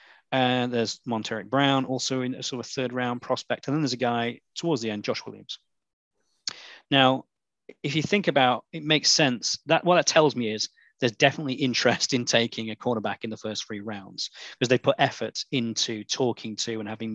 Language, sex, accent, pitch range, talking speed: English, male, British, 110-135 Hz, 205 wpm